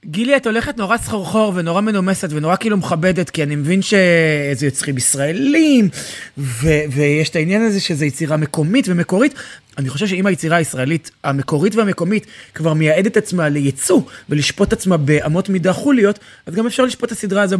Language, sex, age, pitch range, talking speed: Hebrew, male, 20-39, 150-200 Hz, 165 wpm